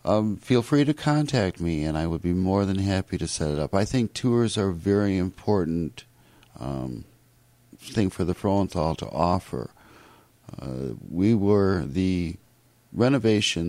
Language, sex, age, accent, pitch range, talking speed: English, male, 60-79, American, 80-110 Hz, 160 wpm